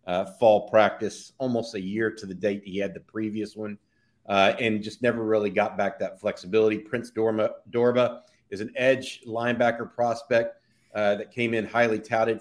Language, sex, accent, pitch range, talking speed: English, male, American, 105-125 Hz, 180 wpm